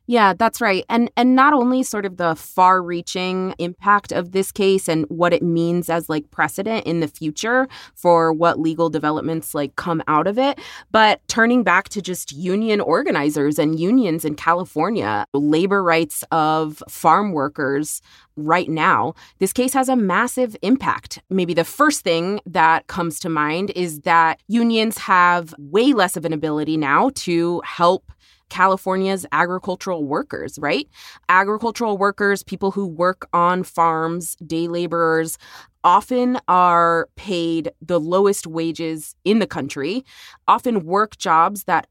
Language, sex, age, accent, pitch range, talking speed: English, female, 20-39, American, 165-200 Hz, 150 wpm